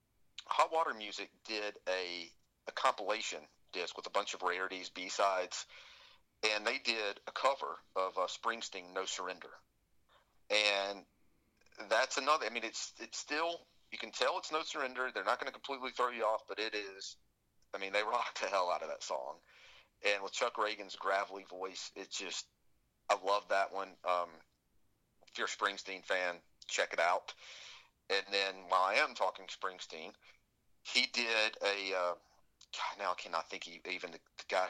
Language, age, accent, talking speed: English, 40-59, American, 175 wpm